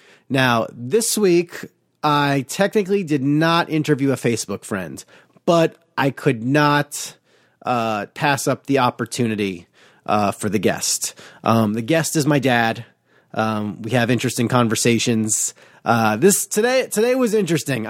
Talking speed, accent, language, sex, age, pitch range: 135 wpm, American, English, male, 30-49, 120-155 Hz